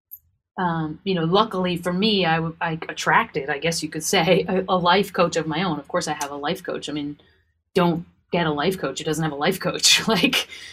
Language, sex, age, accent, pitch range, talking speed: English, female, 30-49, American, 155-190 Hz, 235 wpm